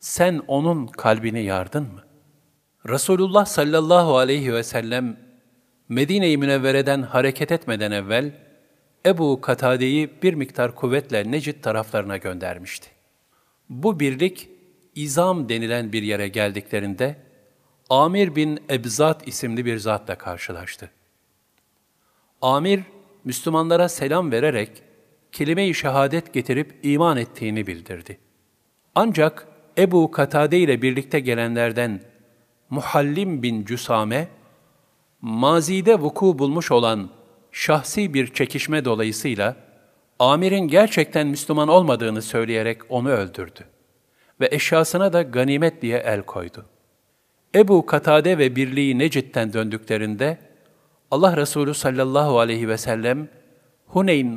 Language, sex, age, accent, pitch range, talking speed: Turkish, male, 50-69, native, 120-160 Hz, 100 wpm